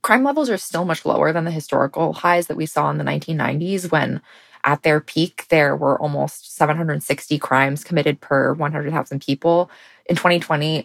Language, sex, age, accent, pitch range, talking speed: English, female, 20-39, American, 150-185 Hz, 170 wpm